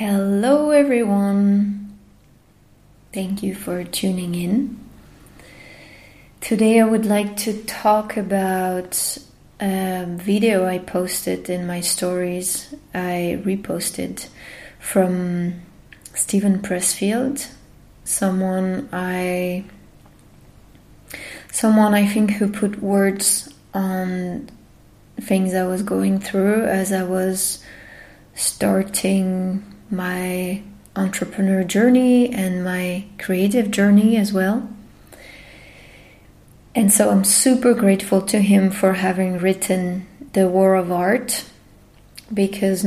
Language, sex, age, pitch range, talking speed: English, female, 20-39, 185-205 Hz, 95 wpm